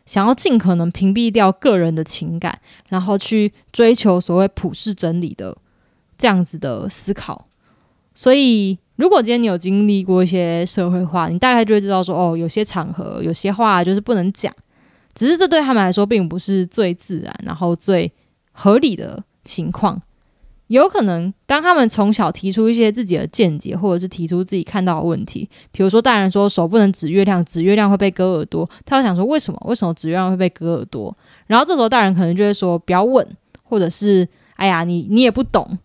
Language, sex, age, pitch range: Chinese, female, 20-39, 175-220 Hz